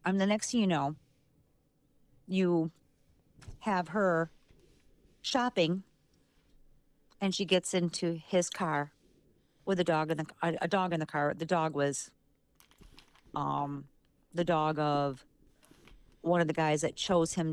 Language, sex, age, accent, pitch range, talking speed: English, female, 40-59, American, 150-180 Hz, 140 wpm